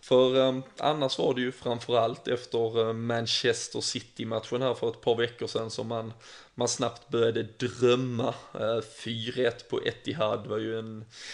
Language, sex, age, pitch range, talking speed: Swedish, male, 20-39, 115-125 Hz, 160 wpm